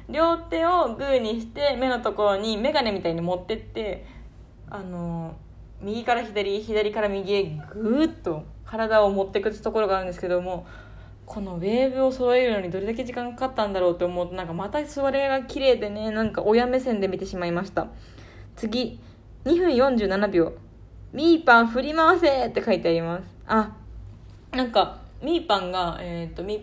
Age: 20-39